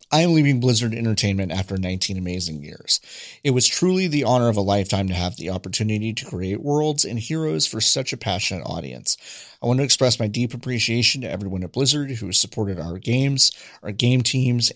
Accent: American